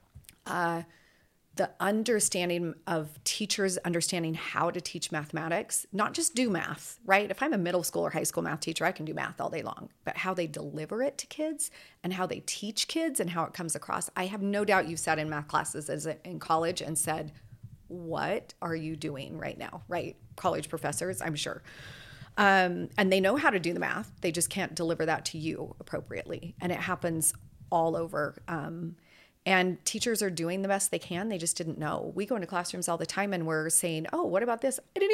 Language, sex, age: English, female, 40-59